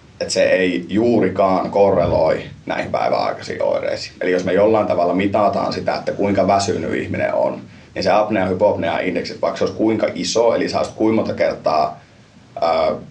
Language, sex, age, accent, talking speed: Finnish, male, 30-49, native, 160 wpm